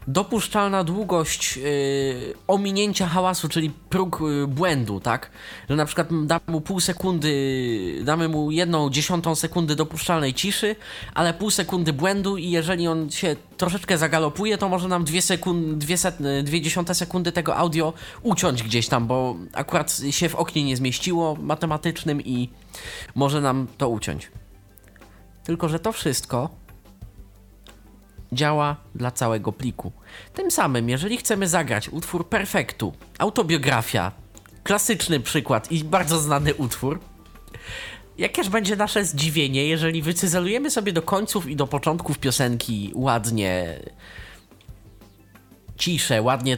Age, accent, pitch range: 20-39, native, 120-180 Hz